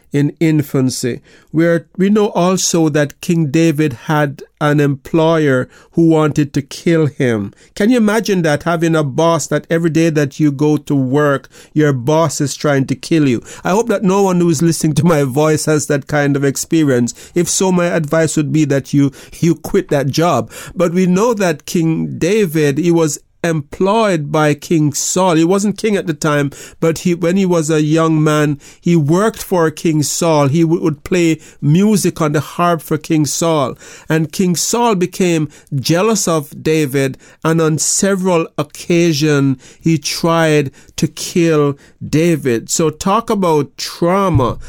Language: English